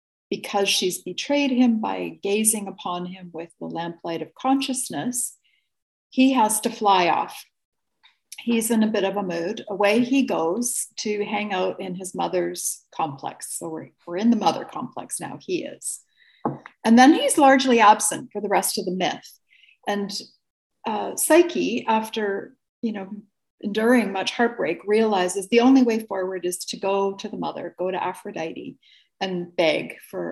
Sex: female